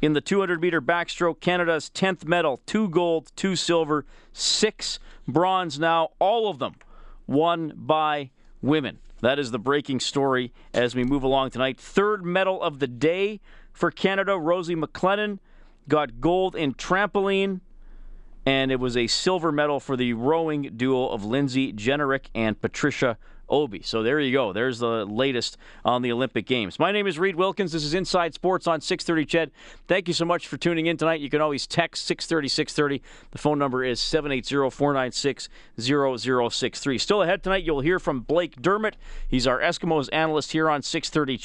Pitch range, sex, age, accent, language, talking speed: 135-180 Hz, male, 40-59, American, English, 170 wpm